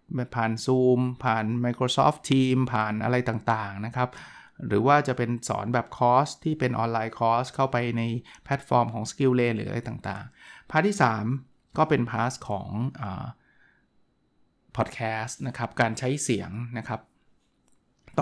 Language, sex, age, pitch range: Thai, male, 20-39, 115-140 Hz